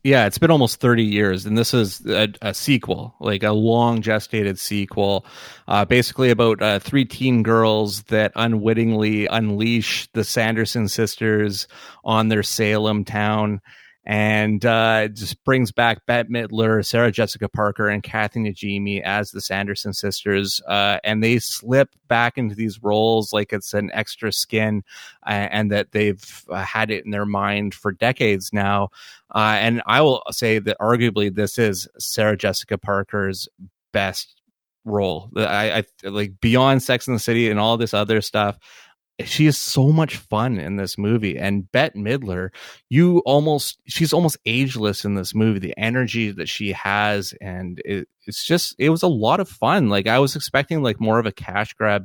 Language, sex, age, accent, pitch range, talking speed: English, male, 30-49, American, 100-115 Hz, 170 wpm